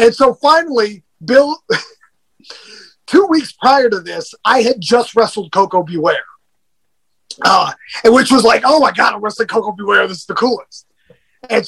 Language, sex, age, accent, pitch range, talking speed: English, male, 30-49, American, 200-260 Hz, 165 wpm